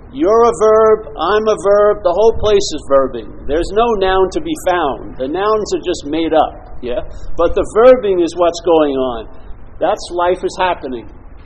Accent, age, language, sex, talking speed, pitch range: American, 50-69, English, male, 185 wpm, 180-235 Hz